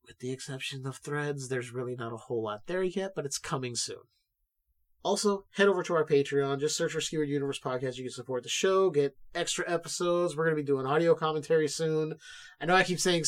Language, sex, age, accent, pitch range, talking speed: English, male, 30-49, American, 130-175 Hz, 225 wpm